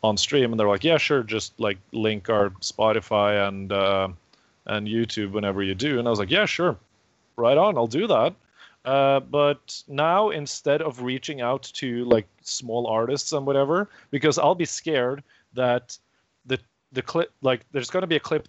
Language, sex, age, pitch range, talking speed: English, male, 30-49, 115-145 Hz, 190 wpm